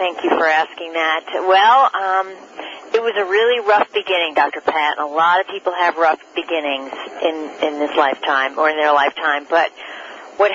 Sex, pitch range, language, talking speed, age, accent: female, 150-185 Hz, English, 180 wpm, 40-59, American